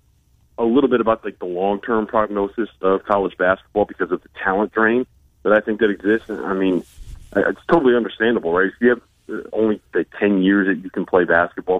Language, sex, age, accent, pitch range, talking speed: English, male, 30-49, American, 90-105 Hz, 200 wpm